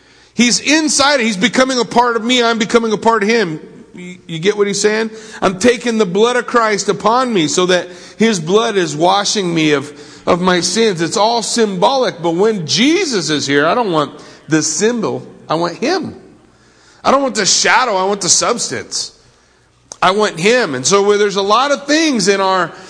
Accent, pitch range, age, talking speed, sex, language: American, 150-210 Hz, 50-69, 200 wpm, male, English